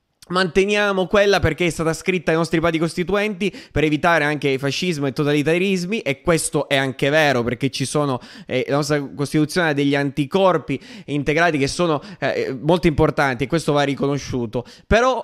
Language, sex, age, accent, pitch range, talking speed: Italian, male, 20-39, native, 145-180 Hz, 165 wpm